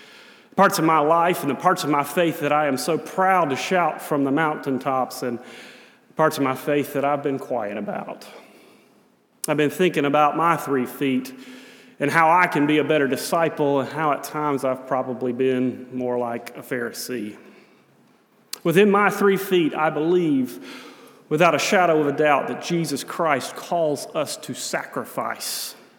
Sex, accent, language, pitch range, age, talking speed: male, American, English, 135-180 Hz, 30-49, 175 wpm